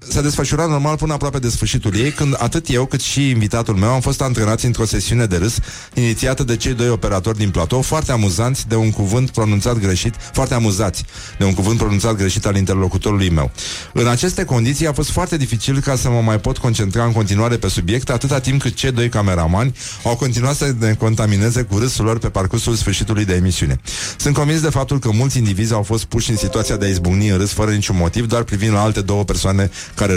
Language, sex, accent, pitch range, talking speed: Romanian, male, native, 105-130 Hz, 215 wpm